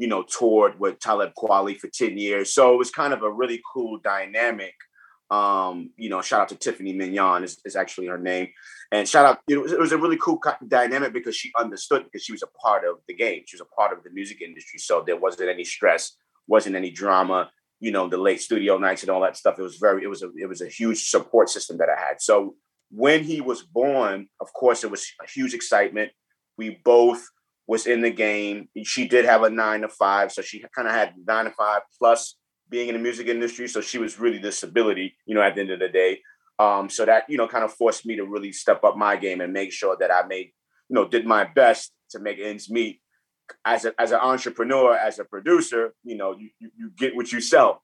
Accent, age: American, 30-49